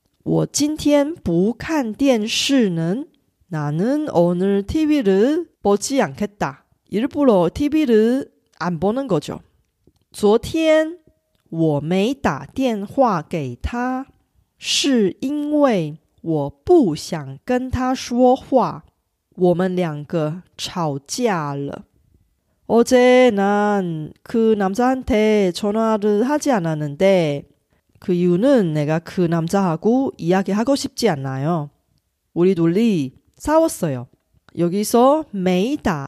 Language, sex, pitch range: Korean, female, 170-255 Hz